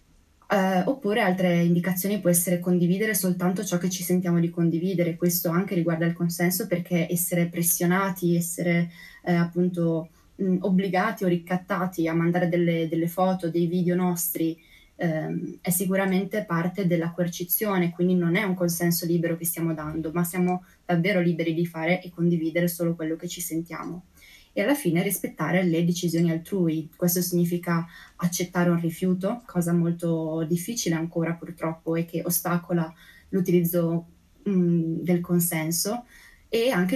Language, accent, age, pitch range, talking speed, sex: Italian, native, 20-39, 170-185 Hz, 140 wpm, female